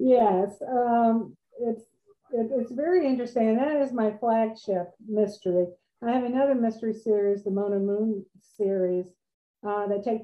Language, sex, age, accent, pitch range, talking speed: English, female, 50-69, American, 190-225 Hz, 145 wpm